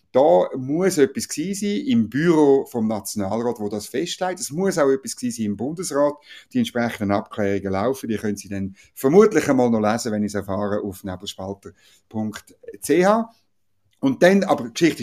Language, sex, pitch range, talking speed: German, male, 105-170 Hz, 165 wpm